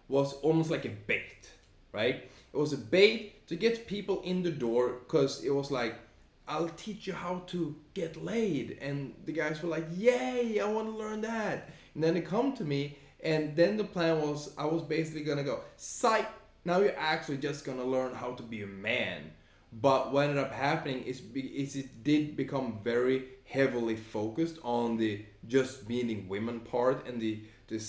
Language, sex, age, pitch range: English, male, 20-39, 110-155 Hz